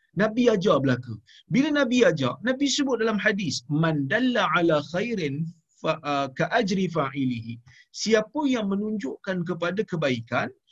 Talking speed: 135 wpm